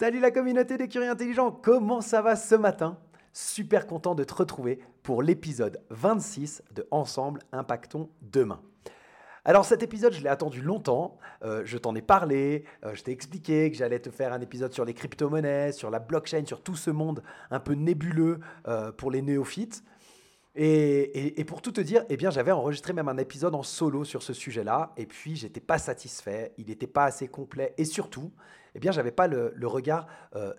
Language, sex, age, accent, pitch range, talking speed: French, male, 30-49, French, 125-170 Hz, 200 wpm